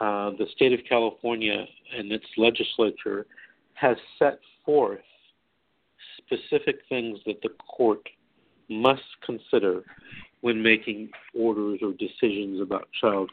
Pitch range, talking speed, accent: 105-165 Hz, 115 wpm, American